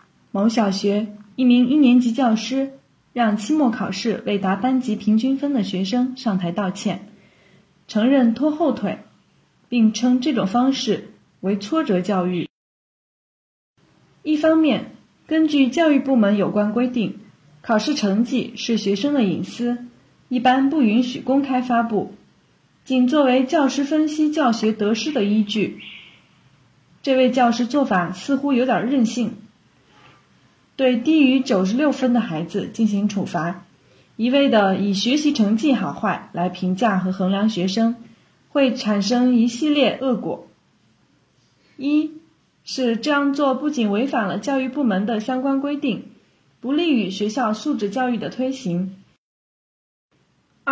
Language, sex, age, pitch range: Chinese, female, 20-39, 205-270 Hz